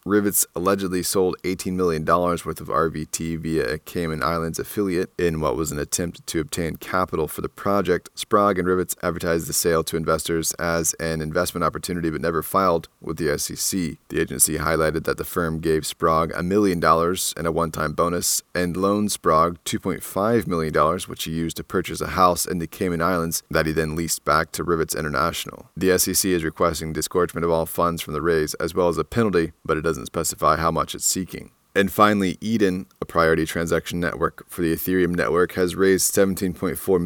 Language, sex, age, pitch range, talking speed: English, male, 30-49, 80-90 Hz, 195 wpm